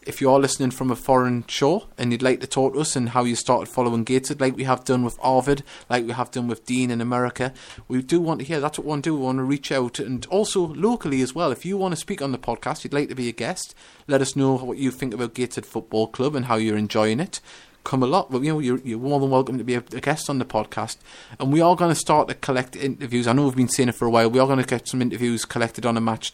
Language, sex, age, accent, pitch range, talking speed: English, male, 30-49, British, 115-135 Hz, 300 wpm